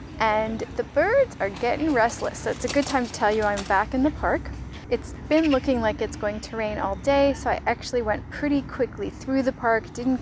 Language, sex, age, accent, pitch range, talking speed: English, female, 10-29, American, 210-265 Hz, 230 wpm